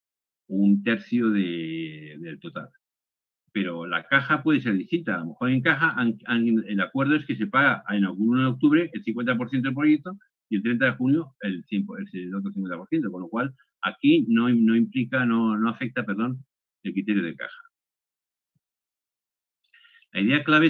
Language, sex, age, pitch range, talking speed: Spanish, male, 50-69, 105-140 Hz, 180 wpm